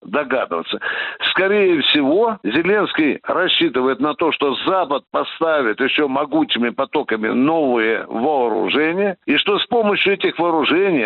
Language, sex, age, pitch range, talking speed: Russian, male, 60-79, 170-275 Hz, 115 wpm